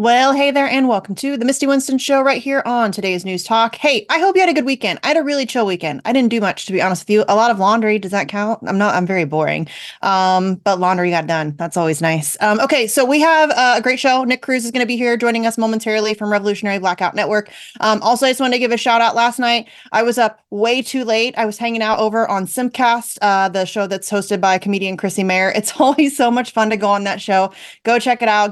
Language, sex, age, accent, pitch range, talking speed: English, female, 30-49, American, 185-235 Hz, 270 wpm